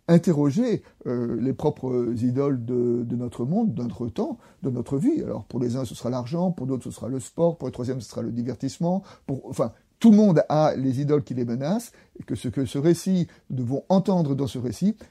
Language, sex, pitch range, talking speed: French, male, 125-170 Hz, 230 wpm